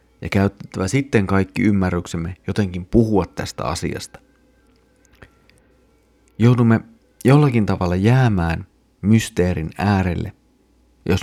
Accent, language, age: native, Finnish, 30-49